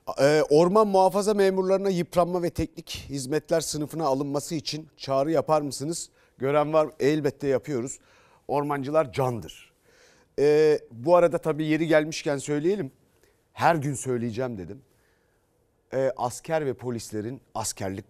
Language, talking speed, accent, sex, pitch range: Turkish, 110 wpm, native, male, 130-170 Hz